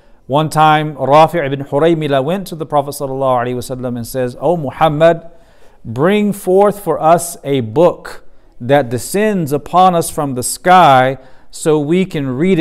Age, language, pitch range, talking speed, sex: 50-69, English, 125-165 Hz, 150 wpm, male